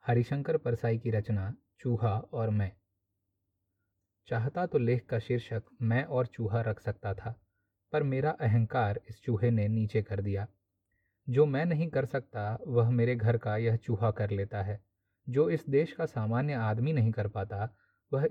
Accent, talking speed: native, 165 wpm